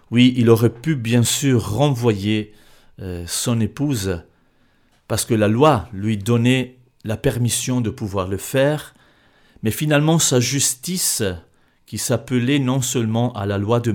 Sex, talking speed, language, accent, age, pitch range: male, 140 wpm, French, French, 40-59, 105-125 Hz